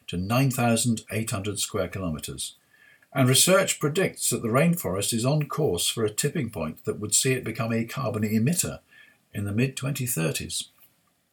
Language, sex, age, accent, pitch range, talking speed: English, male, 50-69, British, 110-140 Hz, 150 wpm